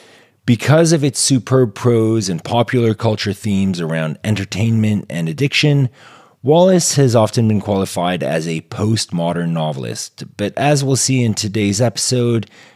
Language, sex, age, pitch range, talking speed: English, male, 30-49, 90-125 Hz, 135 wpm